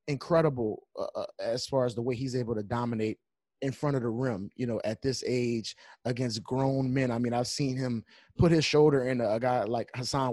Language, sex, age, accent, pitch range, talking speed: English, male, 30-49, American, 120-135 Hz, 215 wpm